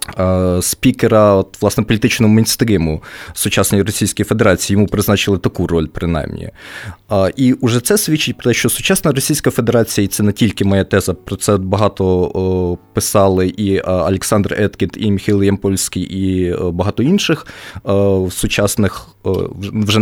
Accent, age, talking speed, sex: native, 20-39, 130 wpm, male